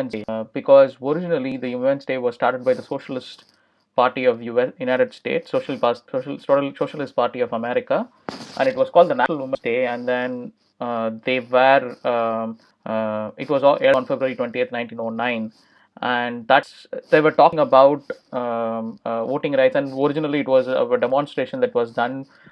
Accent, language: Indian, English